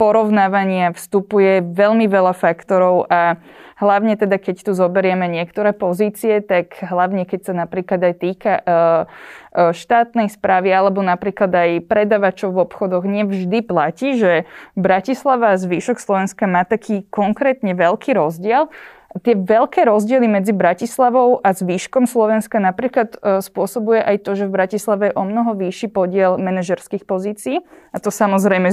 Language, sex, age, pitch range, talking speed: Slovak, female, 20-39, 185-220 Hz, 135 wpm